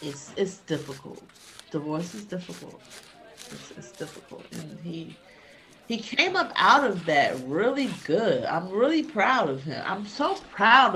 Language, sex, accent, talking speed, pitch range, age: English, female, American, 150 wpm, 140-200 Hz, 40-59